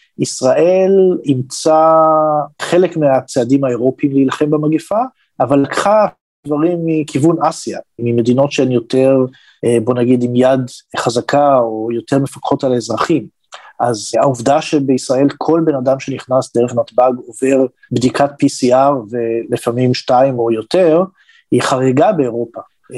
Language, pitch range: Hebrew, 120-145 Hz